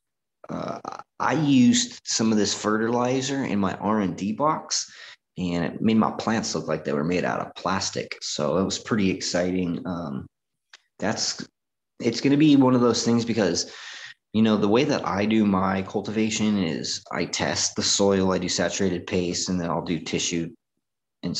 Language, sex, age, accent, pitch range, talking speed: English, male, 20-39, American, 90-110 Hz, 180 wpm